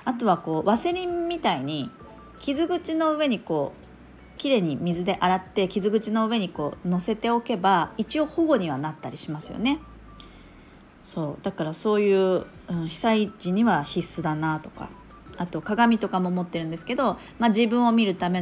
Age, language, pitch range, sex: 40-59, Japanese, 170-235 Hz, female